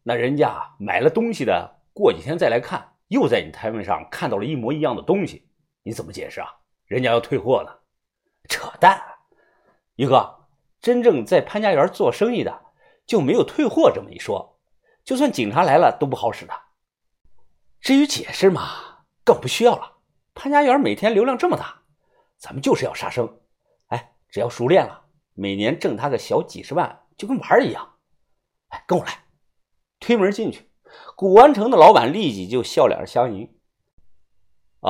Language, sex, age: Chinese, male, 50-69